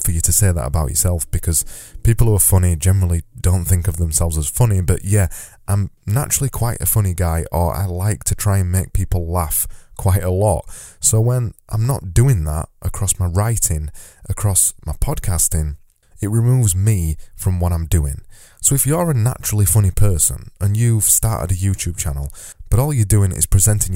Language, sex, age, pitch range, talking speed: English, male, 20-39, 85-110 Hz, 195 wpm